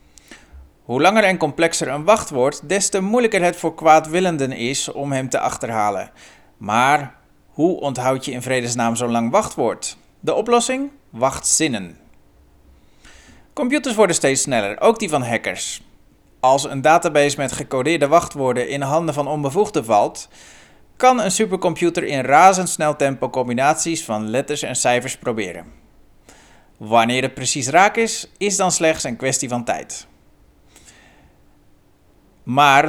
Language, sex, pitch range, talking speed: Dutch, male, 115-175 Hz, 135 wpm